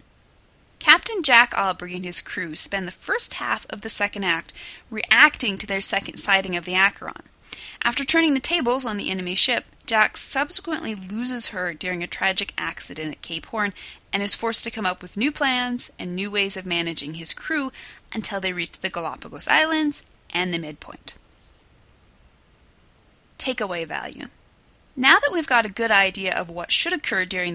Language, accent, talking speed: English, American, 175 wpm